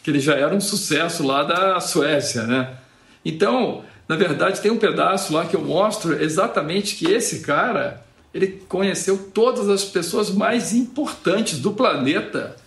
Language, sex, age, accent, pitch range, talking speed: Portuguese, male, 50-69, Brazilian, 145-195 Hz, 155 wpm